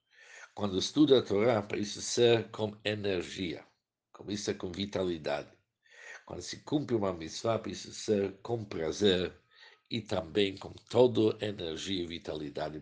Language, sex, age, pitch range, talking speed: Portuguese, male, 60-79, 95-115 Hz, 120 wpm